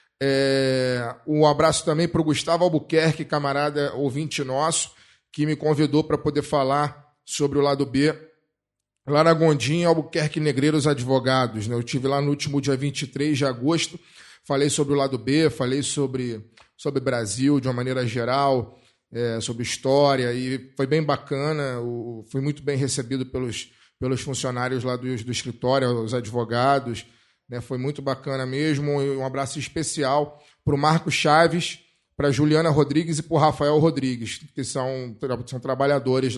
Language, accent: Portuguese, Brazilian